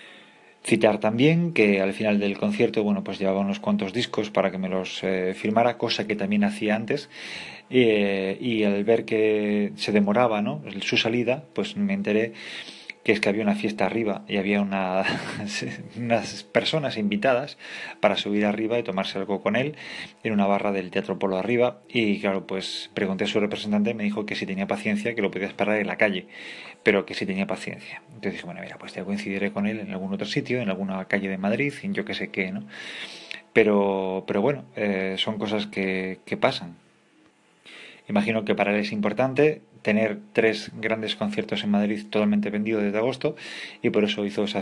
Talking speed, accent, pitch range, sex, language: 195 wpm, Spanish, 100-110 Hz, male, English